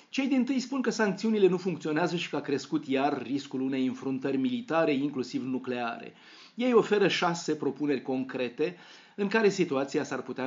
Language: Romanian